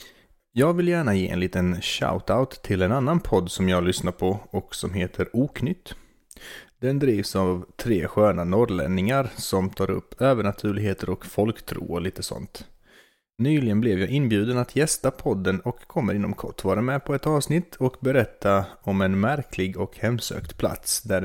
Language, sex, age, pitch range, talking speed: Swedish, male, 30-49, 95-125 Hz, 165 wpm